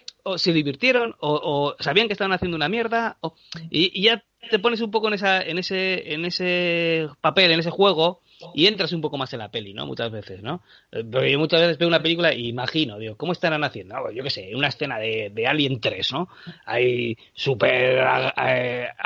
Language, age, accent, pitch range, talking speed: Spanish, 30-49, Spanish, 140-205 Hz, 215 wpm